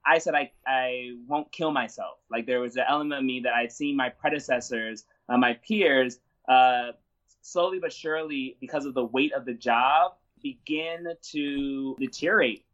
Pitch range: 130-165 Hz